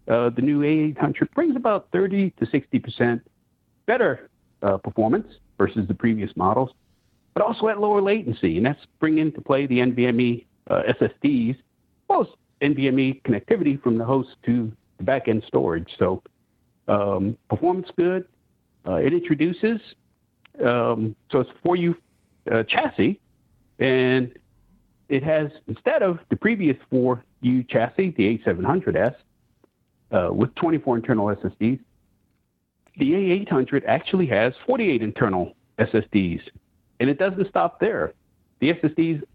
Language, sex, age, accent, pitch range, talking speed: English, male, 60-79, American, 115-170 Hz, 125 wpm